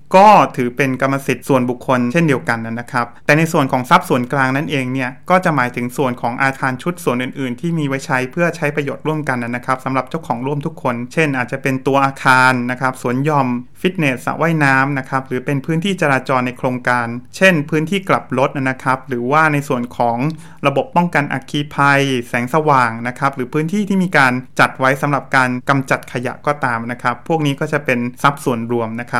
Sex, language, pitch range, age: male, English, 125-150 Hz, 20-39